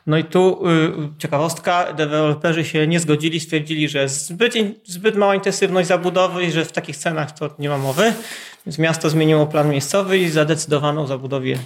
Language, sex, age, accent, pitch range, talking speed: Polish, male, 30-49, native, 145-175 Hz, 175 wpm